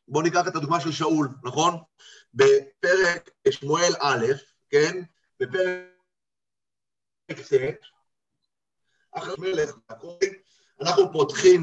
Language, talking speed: Hebrew, 95 wpm